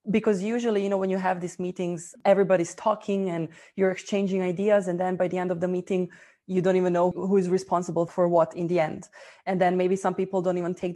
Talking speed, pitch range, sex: 235 wpm, 175-195 Hz, female